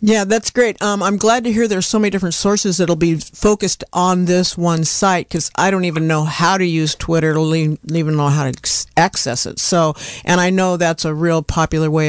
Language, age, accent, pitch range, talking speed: English, 50-69, American, 160-200 Hz, 225 wpm